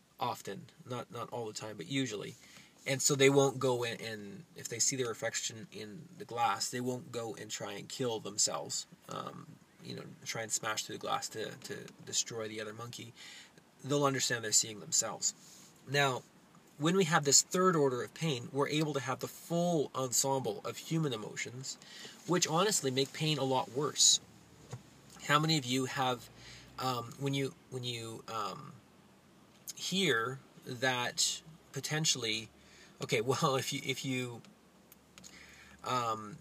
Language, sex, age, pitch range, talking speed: English, male, 20-39, 120-145 Hz, 160 wpm